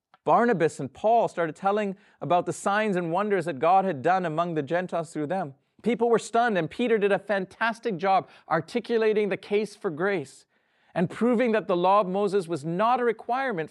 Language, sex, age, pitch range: English, male, 40-59, 170-220 Hz